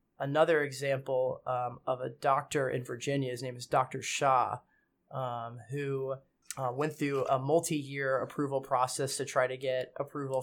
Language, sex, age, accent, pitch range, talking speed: English, male, 20-39, American, 135-150 Hz, 150 wpm